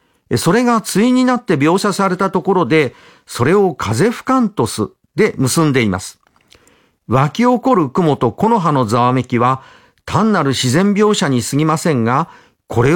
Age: 50-69